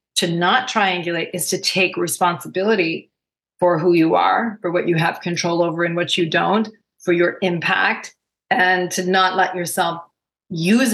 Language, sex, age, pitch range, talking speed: English, female, 40-59, 165-185 Hz, 165 wpm